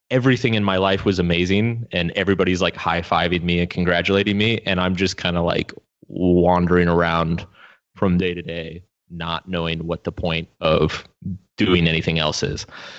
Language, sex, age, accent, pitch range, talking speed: English, male, 20-39, American, 85-105 Hz, 165 wpm